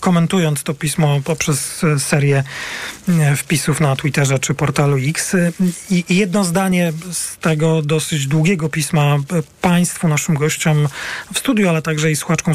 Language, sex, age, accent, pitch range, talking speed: Polish, male, 40-59, native, 155-180 Hz, 135 wpm